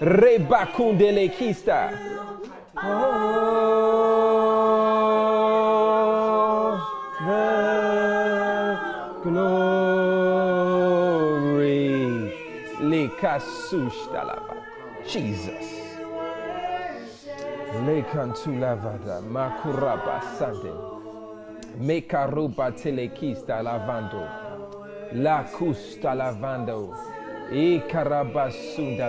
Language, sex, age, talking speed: English, male, 30-49, 35 wpm